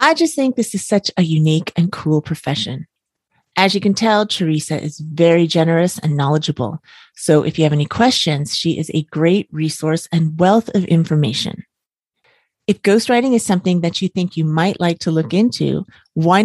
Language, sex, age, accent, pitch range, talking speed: English, female, 30-49, American, 155-200 Hz, 180 wpm